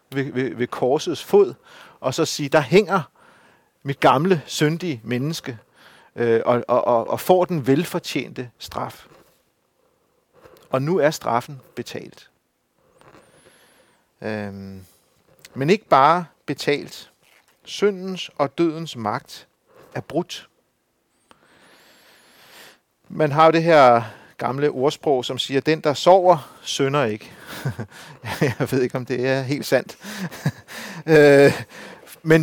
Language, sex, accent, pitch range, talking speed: Danish, male, native, 120-160 Hz, 115 wpm